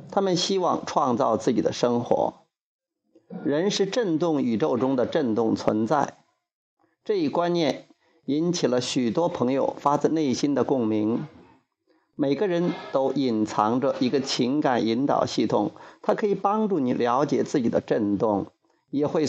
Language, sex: Chinese, male